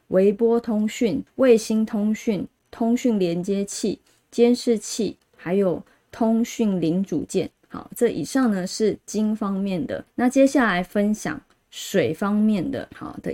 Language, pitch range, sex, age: Chinese, 185-235 Hz, female, 20-39